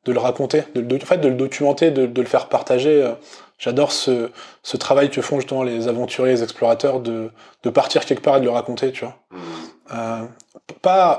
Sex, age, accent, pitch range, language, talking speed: male, 20-39, French, 120-145 Hz, French, 220 wpm